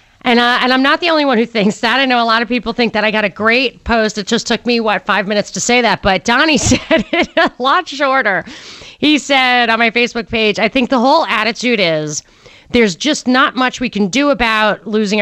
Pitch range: 200-260 Hz